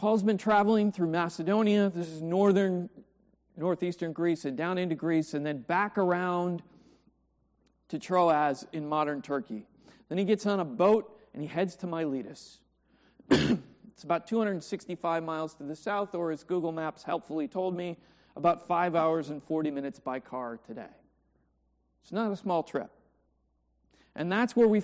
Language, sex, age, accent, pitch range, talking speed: English, male, 40-59, American, 150-195 Hz, 160 wpm